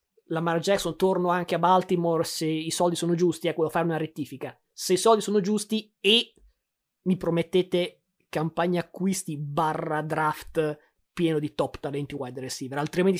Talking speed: 165 wpm